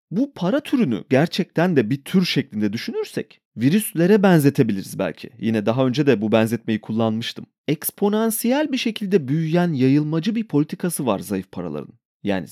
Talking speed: 145 wpm